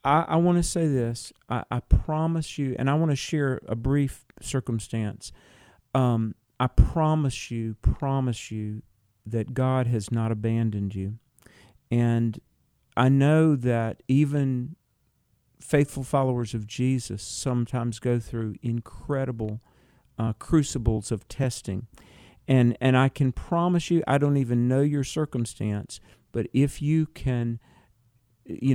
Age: 50-69